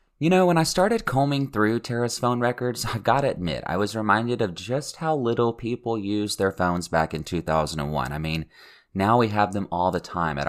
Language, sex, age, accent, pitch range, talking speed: English, male, 30-49, American, 80-120 Hz, 215 wpm